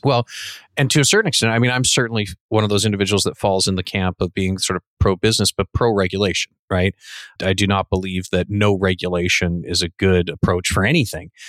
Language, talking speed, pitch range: English, 210 wpm, 95-115 Hz